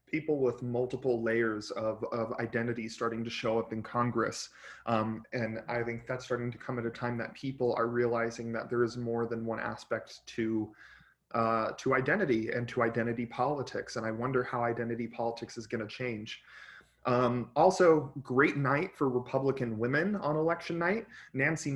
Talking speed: 175 wpm